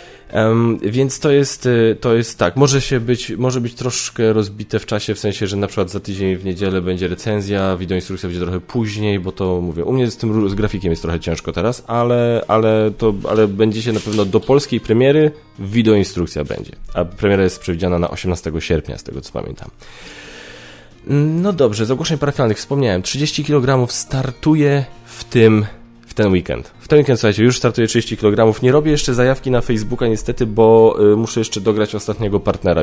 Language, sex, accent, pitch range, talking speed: Polish, male, native, 95-120 Hz, 190 wpm